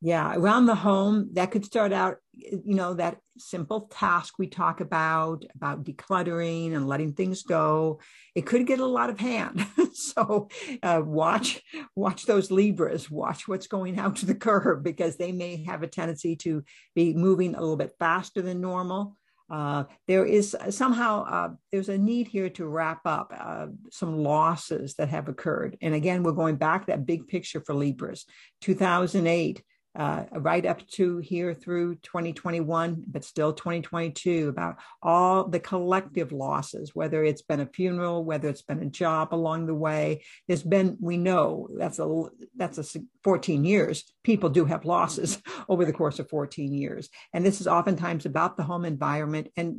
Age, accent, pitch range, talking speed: 60-79, American, 160-195 Hz, 175 wpm